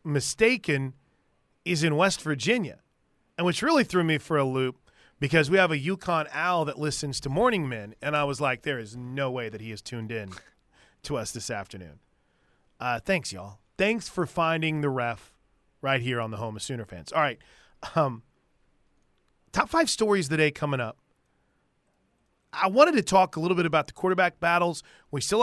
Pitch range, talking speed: 135-190 Hz, 190 wpm